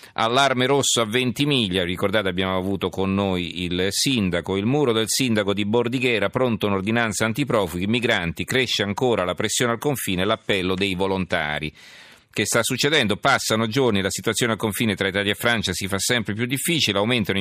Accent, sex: native, male